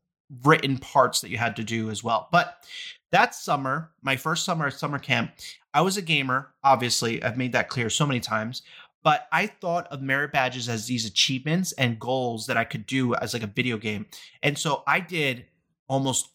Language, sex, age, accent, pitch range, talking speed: English, male, 30-49, American, 125-160 Hz, 200 wpm